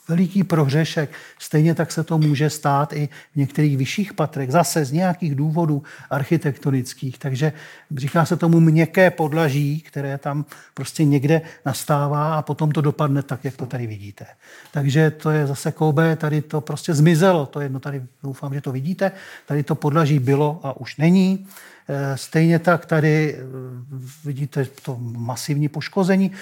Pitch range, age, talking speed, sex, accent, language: 140-165 Hz, 40-59, 155 wpm, male, native, Czech